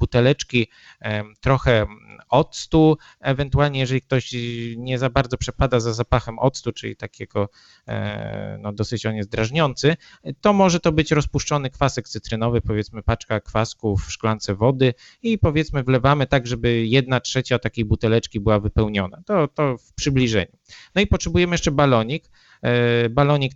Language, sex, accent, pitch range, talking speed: Polish, male, native, 110-145 Hz, 140 wpm